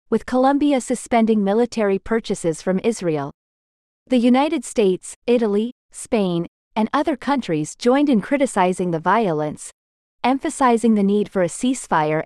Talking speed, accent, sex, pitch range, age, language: 125 wpm, American, female, 180-240 Hz, 40-59, English